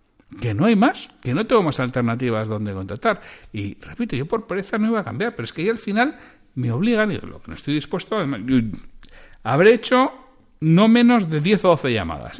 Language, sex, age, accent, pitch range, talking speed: Spanish, male, 60-79, Spanish, 110-175 Hz, 215 wpm